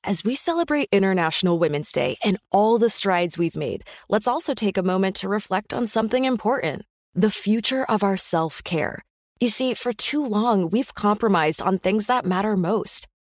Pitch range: 180-240 Hz